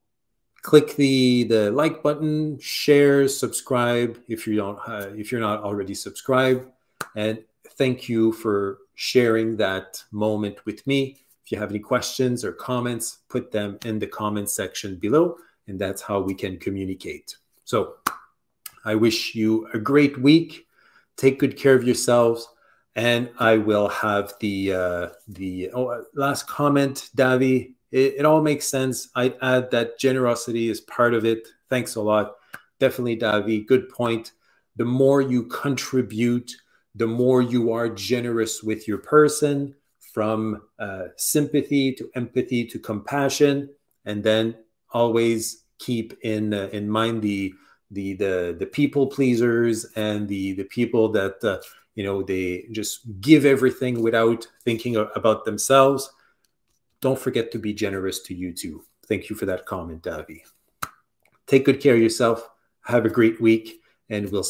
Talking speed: 150 wpm